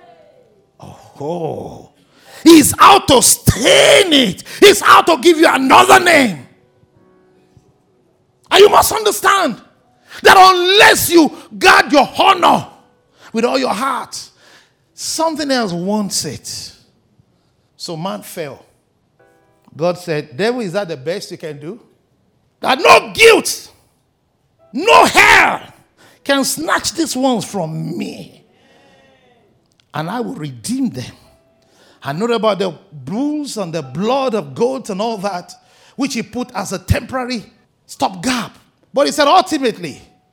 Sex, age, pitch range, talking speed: male, 50-69, 175-290 Hz, 125 wpm